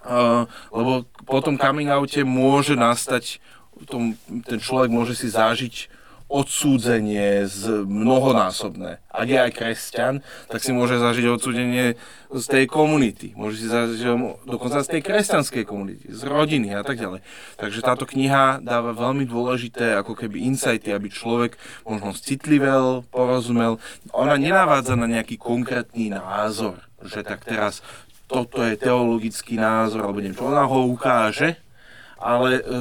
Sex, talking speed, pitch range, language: male, 135 wpm, 110-130 Hz, Slovak